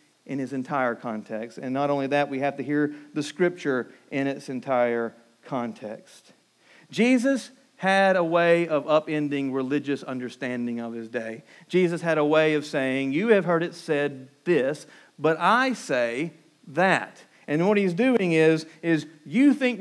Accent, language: American, English